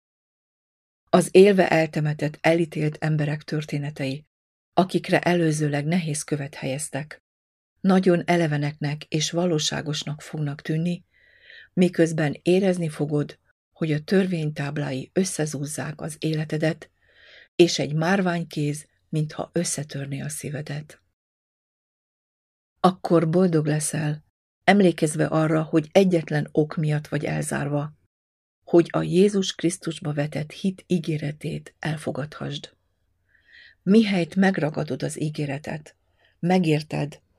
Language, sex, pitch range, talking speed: Hungarian, female, 145-170 Hz, 90 wpm